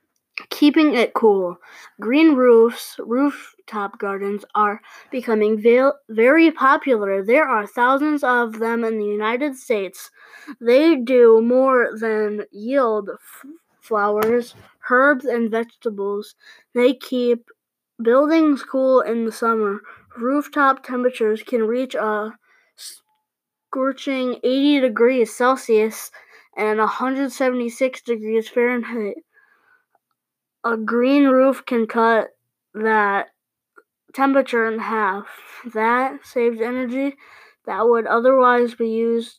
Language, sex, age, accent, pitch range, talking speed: English, female, 20-39, American, 225-270 Hz, 100 wpm